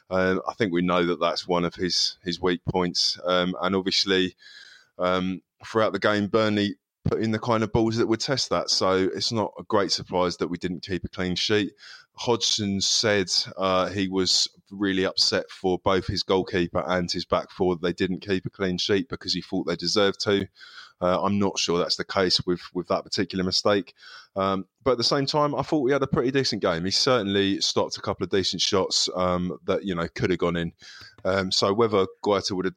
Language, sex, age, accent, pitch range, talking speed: English, male, 20-39, British, 90-100 Hz, 220 wpm